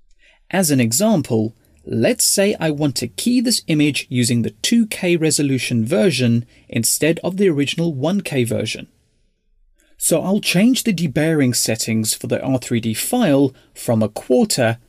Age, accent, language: 30-49, British, English